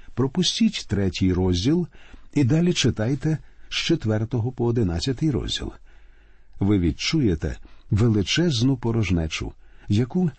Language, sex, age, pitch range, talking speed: Ukrainian, male, 50-69, 100-145 Hz, 90 wpm